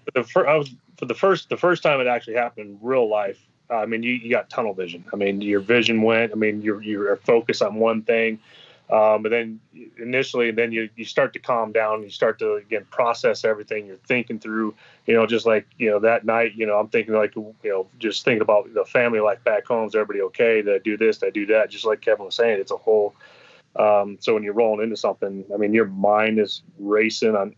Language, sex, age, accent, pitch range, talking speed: English, male, 30-49, American, 105-130 Hz, 240 wpm